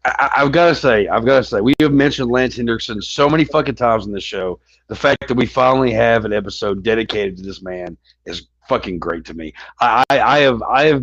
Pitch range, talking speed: 95-130 Hz, 240 wpm